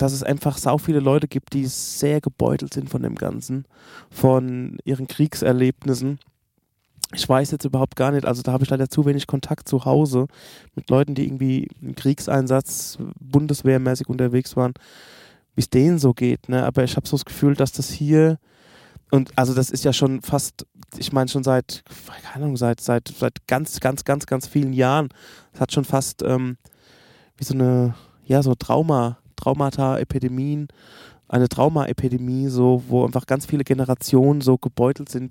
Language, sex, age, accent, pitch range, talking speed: German, male, 20-39, German, 125-140 Hz, 175 wpm